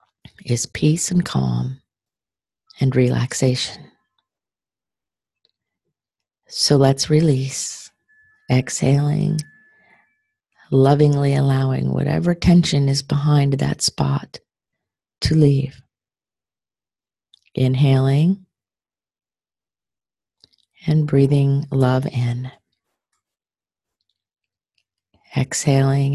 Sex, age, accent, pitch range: female, 40-59, American, 130-150 Hz